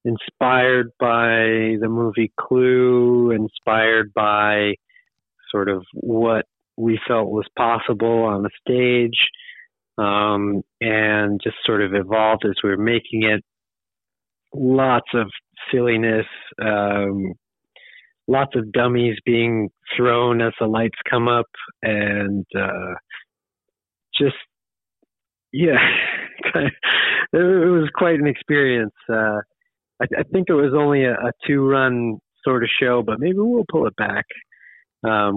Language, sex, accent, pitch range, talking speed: English, male, American, 110-130 Hz, 120 wpm